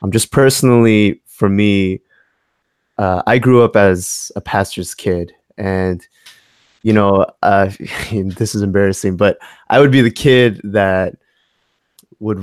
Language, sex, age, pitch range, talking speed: English, male, 20-39, 100-130 Hz, 135 wpm